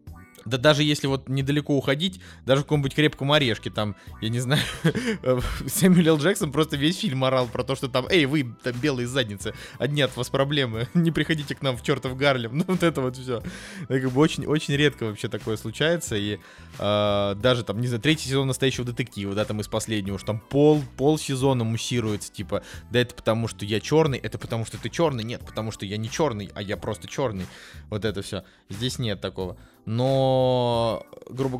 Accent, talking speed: native, 190 wpm